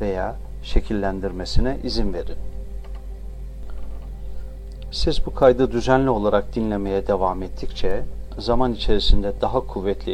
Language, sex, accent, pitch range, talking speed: Turkish, male, native, 95-110 Hz, 95 wpm